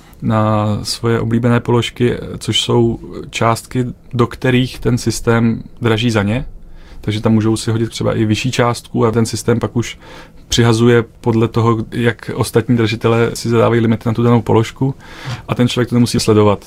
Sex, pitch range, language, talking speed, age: male, 110-120 Hz, Czech, 170 wpm, 30-49